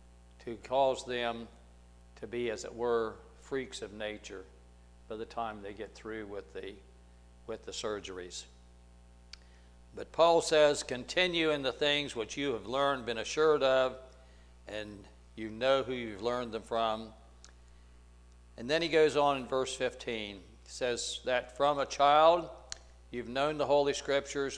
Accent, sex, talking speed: American, male, 155 wpm